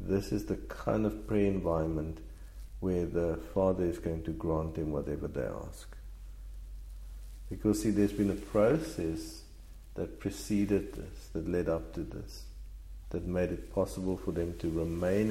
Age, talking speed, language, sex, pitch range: 50-69, 155 wpm, English, male, 80-100 Hz